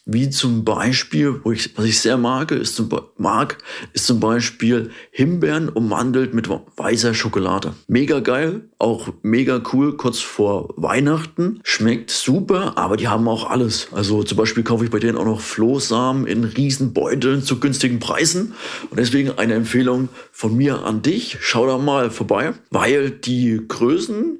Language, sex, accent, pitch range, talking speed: German, male, German, 110-135 Hz, 160 wpm